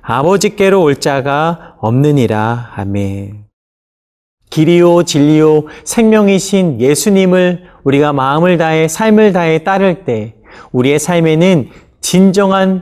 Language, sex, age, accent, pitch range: Korean, male, 40-59, native, 130-190 Hz